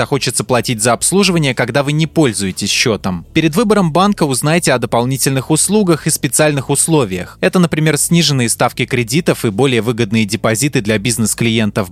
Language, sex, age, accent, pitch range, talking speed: Russian, male, 20-39, native, 115-160 Hz, 150 wpm